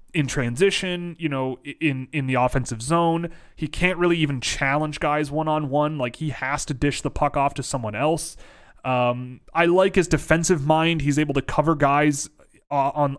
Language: English